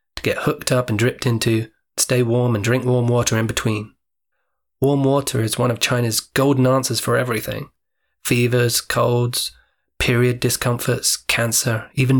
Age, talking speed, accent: 20-39, 150 wpm, British